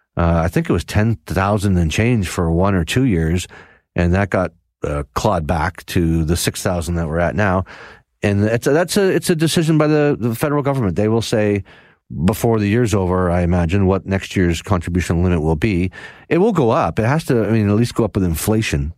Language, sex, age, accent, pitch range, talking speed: English, male, 40-59, American, 90-120 Hz, 220 wpm